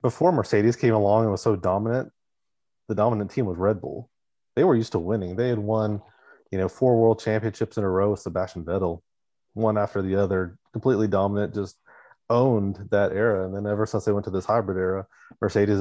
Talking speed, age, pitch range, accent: 205 wpm, 30-49, 95-110 Hz, American